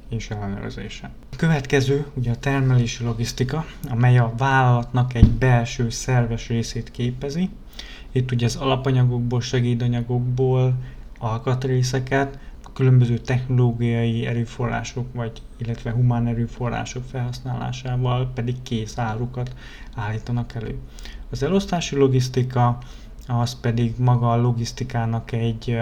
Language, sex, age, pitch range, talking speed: Hungarian, male, 20-39, 115-130 Hz, 100 wpm